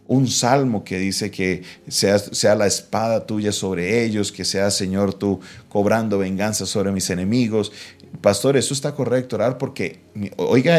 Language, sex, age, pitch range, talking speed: Spanish, male, 40-59, 95-130 Hz, 155 wpm